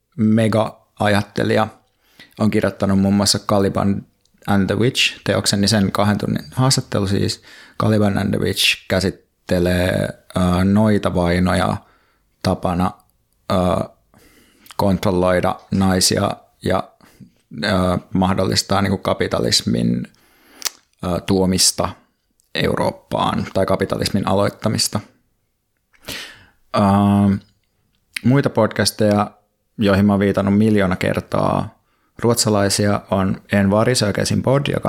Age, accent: 20-39, native